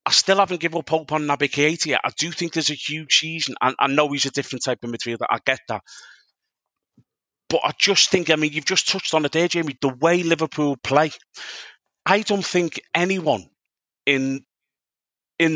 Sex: male